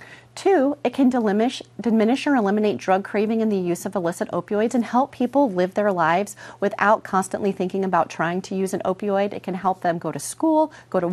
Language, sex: English, female